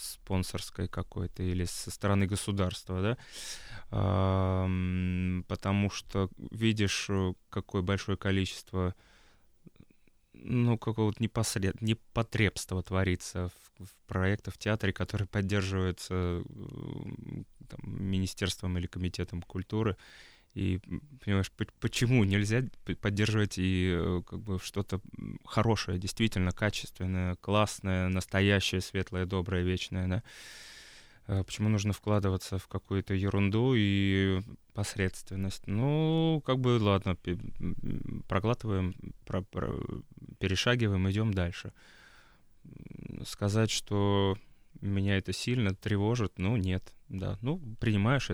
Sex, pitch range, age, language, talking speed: male, 95-110 Hz, 20-39, Russian, 95 wpm